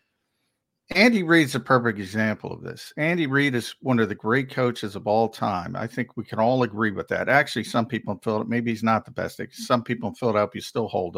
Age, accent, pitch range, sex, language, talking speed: 50-69, American, 110-145 Hz, male, English, 230 wpm